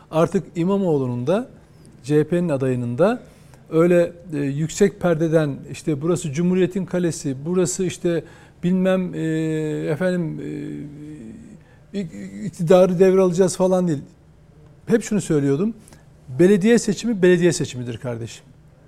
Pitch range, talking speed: 150-195 Hz, 90 wpm